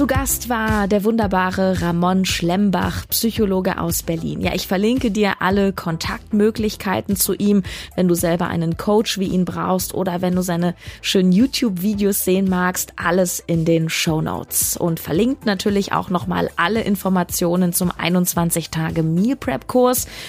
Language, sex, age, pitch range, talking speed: German, female, 20-39, 175-210 Hz, 140 wpm